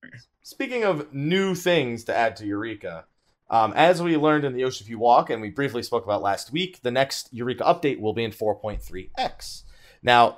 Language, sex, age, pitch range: English, male, 30-49, 105-155 Hz